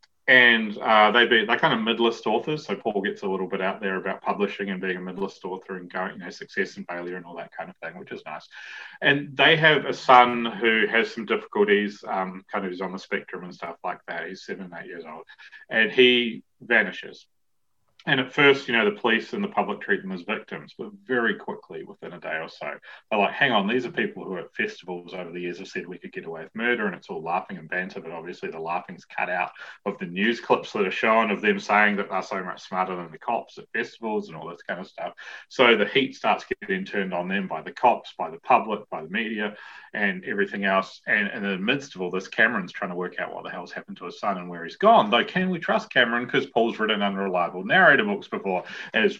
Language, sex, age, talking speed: English, male, 30-49, 250 wpm